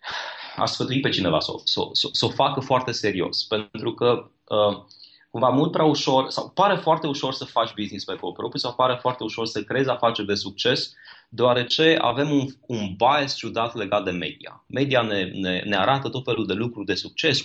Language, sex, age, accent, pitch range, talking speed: Romanian, male, 20-39, native, 110-140 Hz, 195 wpm